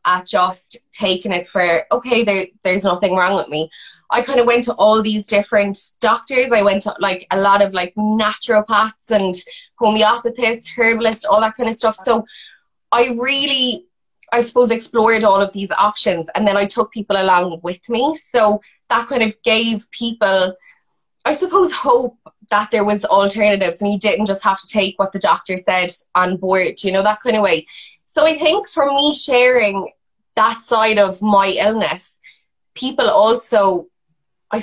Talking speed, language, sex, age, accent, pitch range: 175 wpm, English, female, 20-39, Irish, 195-235 Hz